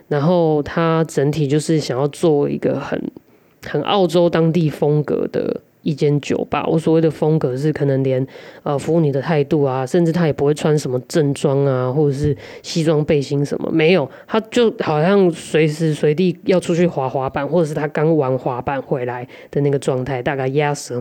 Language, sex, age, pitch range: Chinese, female, 20-39, 140-170 Hz